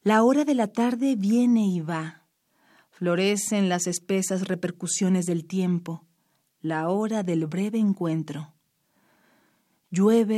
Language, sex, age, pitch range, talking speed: Spanish, female, 40-59, 175-220 Hz, 115 wpm